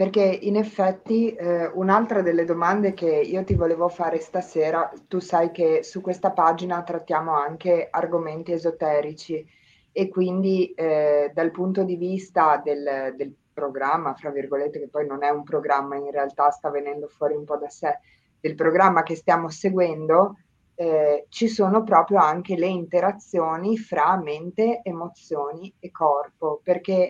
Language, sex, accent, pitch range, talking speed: Italian, female, native, 155-190 Hz, 150 wpm